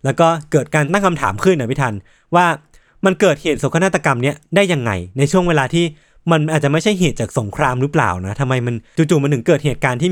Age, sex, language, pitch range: 20-39, male, Thai, 125-170 Hz